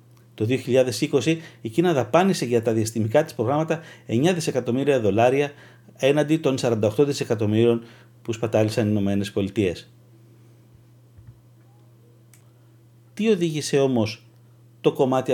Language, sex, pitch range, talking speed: Greek, male, 115-145 Hz, 105 wpm